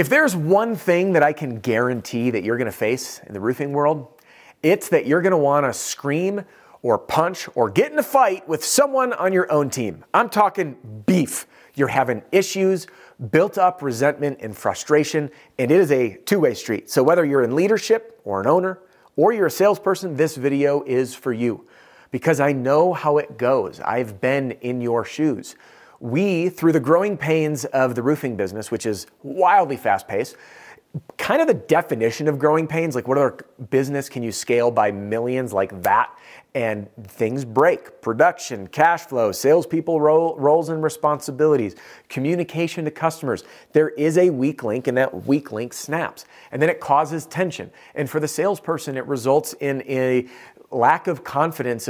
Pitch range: 125-165 Hz